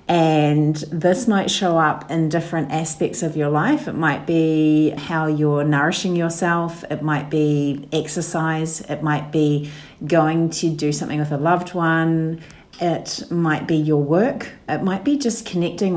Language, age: English, 40-59